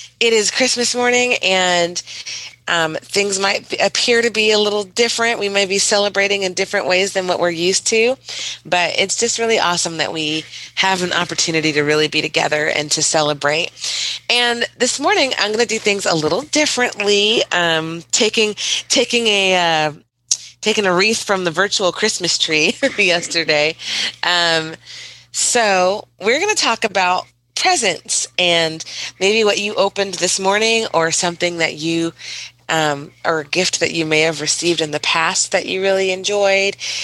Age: 30-49